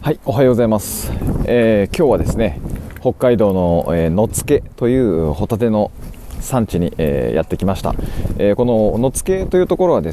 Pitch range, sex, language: 90-125 Hz, male, Japanese